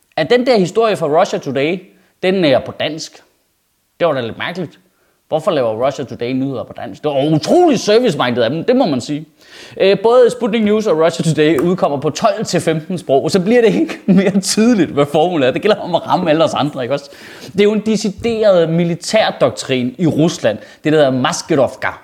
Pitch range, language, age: 145-210 Hz, Danish, 30-49